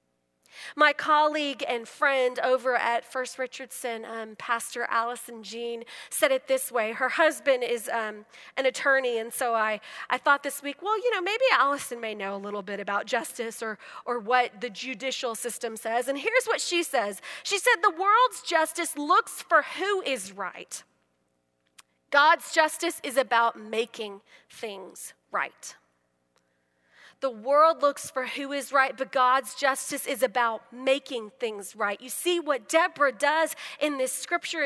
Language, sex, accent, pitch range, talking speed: English, female, American, 230-295 Hz, 160 wpm